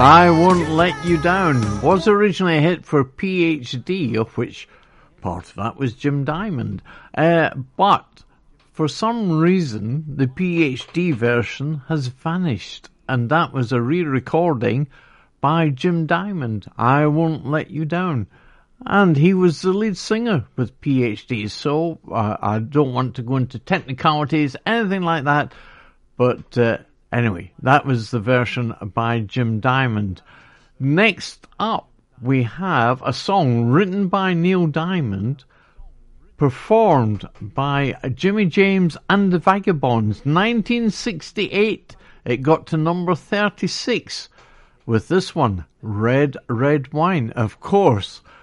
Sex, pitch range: male, 120-170 Hz